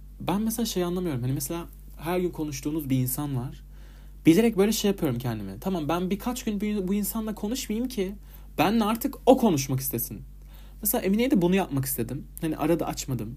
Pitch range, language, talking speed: 125-205 Hz, Turkish, 175 wpm